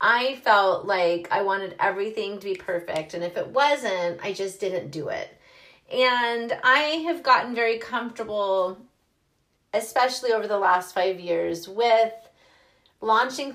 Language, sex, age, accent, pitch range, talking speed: English, female, 30-49, American, 190-265 Hz, 140 wpm